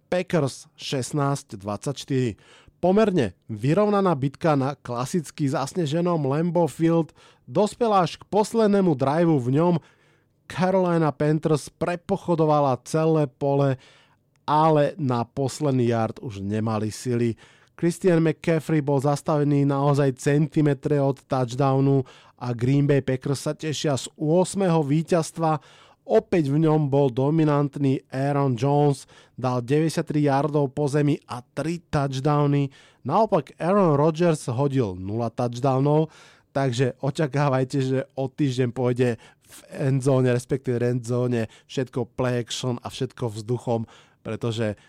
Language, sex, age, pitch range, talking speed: Slovak, male, 20-39, 125-155 Hz, 110 wpm